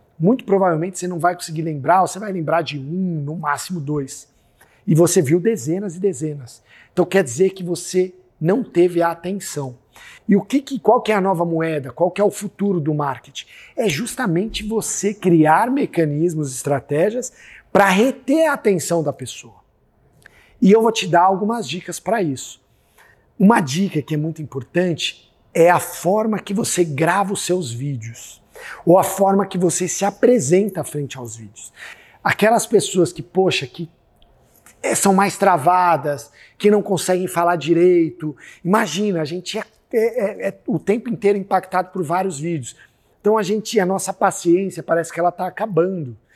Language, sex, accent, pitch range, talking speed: Portuguese, male, Brazilian, 160-205 Hz, 170 wpm